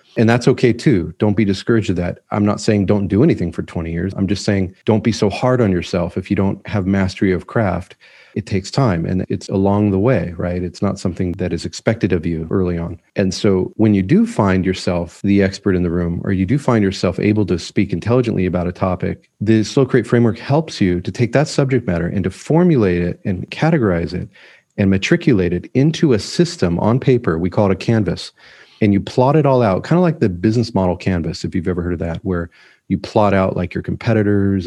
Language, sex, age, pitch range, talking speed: English, male, 30-49, 95-115 Hz, 230 wpm